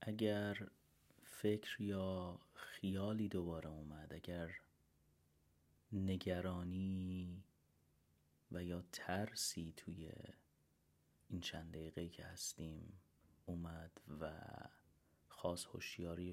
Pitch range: 75-95 Hz